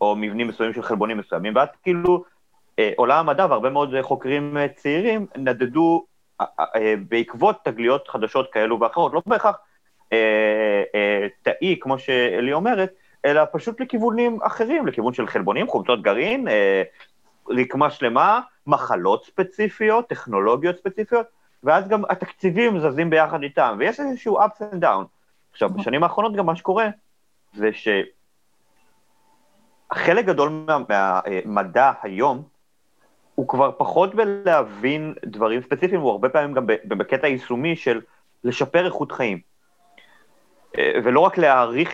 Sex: male